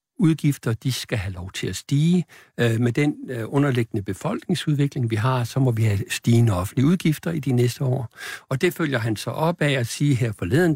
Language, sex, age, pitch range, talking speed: Danish, male, 60-79, 120-155 Hz, 200 wpm